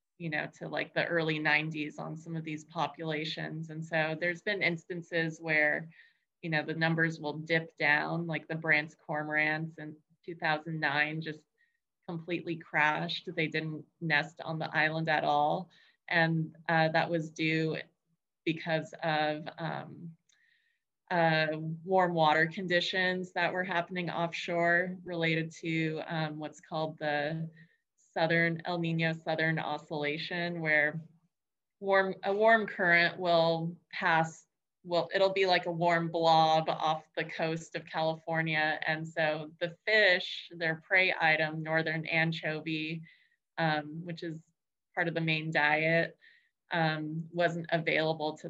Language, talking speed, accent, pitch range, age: English, 135 wpm, American, 155-170 Hz, 20-39